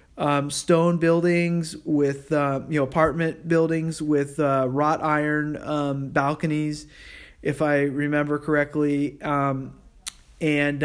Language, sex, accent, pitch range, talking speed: English, male, American, 135-155 Hz, 115 wpm